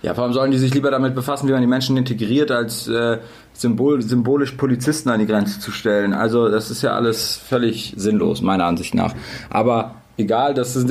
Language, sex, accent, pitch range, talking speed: German, male, German, 120-135 Hz, 205 wpm